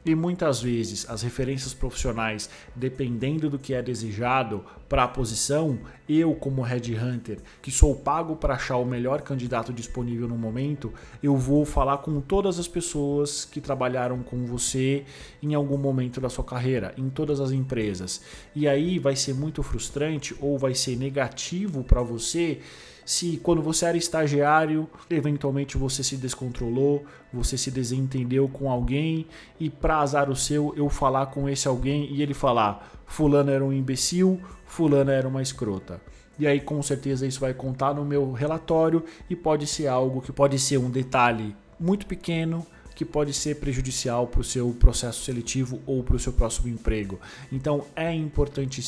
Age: 20-39